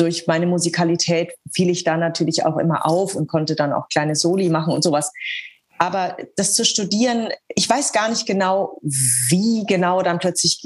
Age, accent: 30-49, German